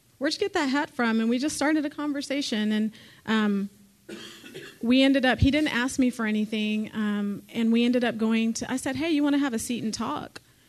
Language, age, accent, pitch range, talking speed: English, 30-49, American, 210-240 Hz, 230 wpm